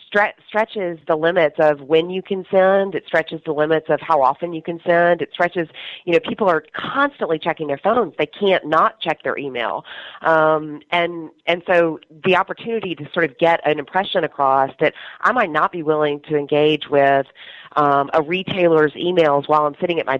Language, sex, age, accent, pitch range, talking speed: English, female, 30-49, American, 140-170 Hz, 195 wpm